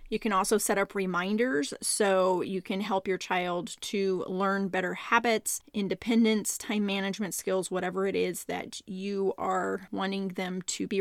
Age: 30-49